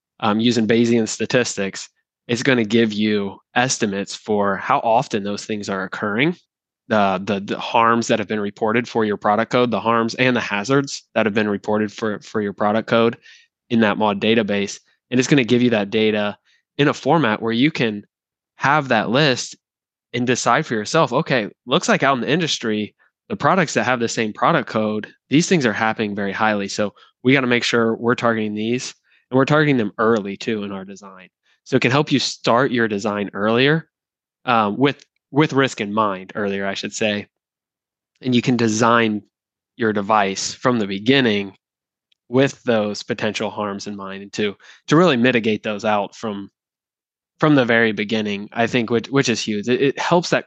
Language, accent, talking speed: English, American, 195 wpm